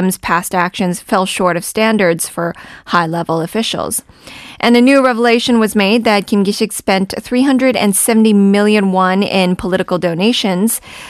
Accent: American